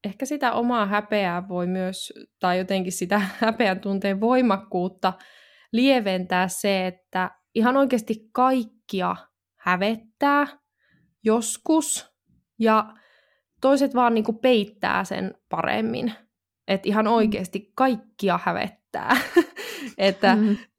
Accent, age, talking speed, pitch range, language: native, 20-39, 90 wpm, 190-235 Hz, Finnish